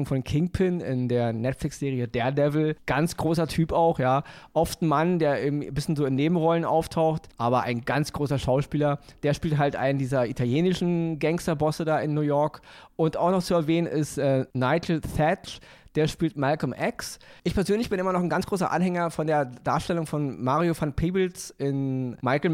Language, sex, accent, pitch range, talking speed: German, male, German, 140-170 Hz, 185 wpm